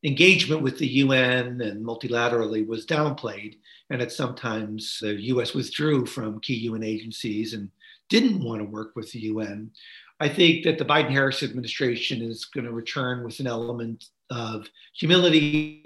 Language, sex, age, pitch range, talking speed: English, male, 40-59, 120-150 Hz, 155 wpm